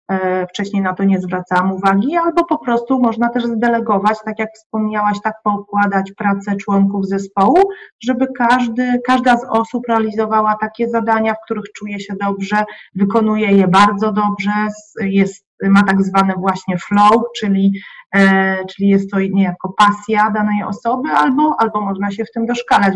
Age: 30-49